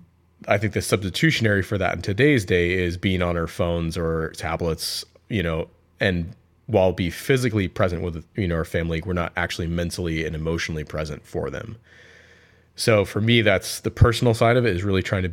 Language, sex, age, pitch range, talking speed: English, male, 30-49, 85-105 Hz, 195 wpm